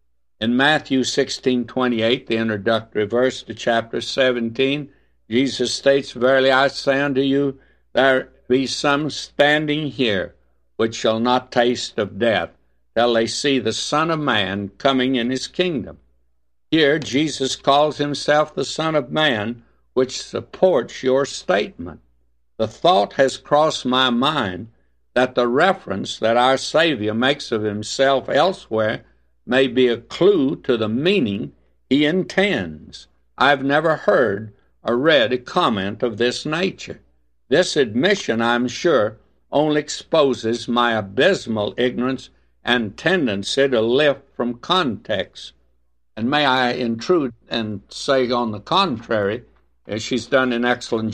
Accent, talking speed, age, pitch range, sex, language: American, 135 wpm, 60-79, 110-140 Hz, male, English